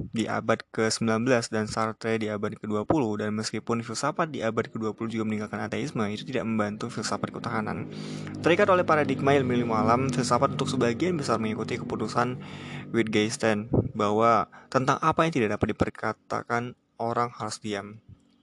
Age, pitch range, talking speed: 20-39, 110-125 Hz, 145 wpm